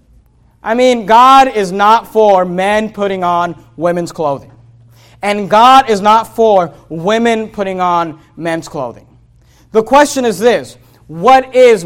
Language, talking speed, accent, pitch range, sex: English, 135 wpm, American, 160-215 Hz, male